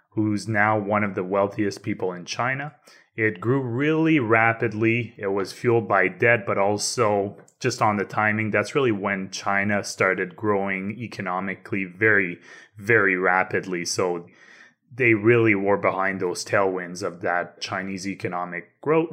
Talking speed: 145 wpm